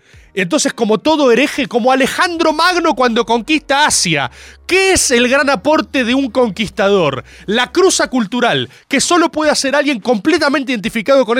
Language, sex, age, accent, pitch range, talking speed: Spanish, male, 20-39, Argentinian, 225-310 Hz, 155 wpm